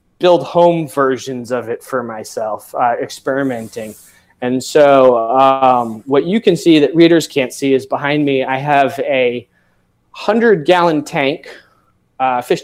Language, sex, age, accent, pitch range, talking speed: English, male, 20-39, American, 125-160 Hz, 140 wpm